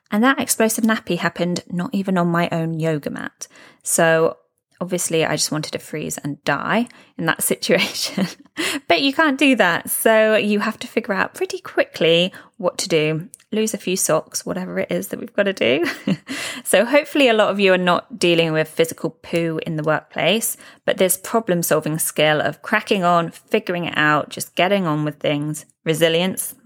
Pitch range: 155-220 Hz